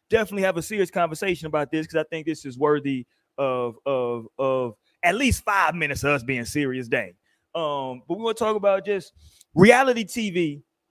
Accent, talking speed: American, 195 wpm